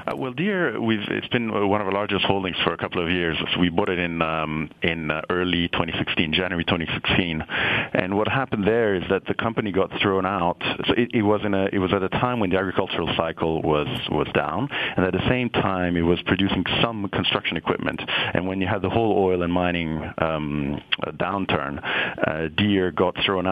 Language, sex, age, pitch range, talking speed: English, male, 40-59, 85-100 Hz, 210 wpm